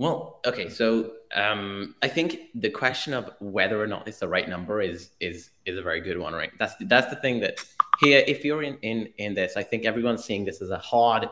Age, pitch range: 20-39, 100-125 Hz